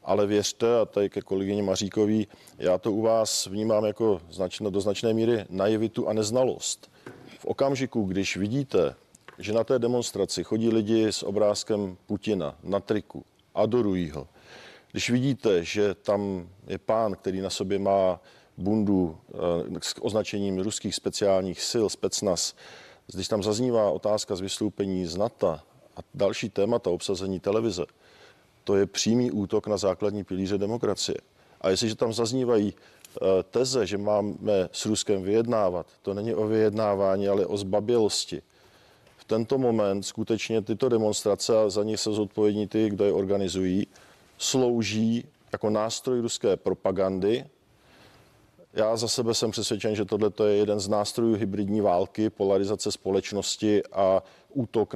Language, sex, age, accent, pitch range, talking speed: Czech, male, 40-59, native, 100-115 Hz, 140 wpm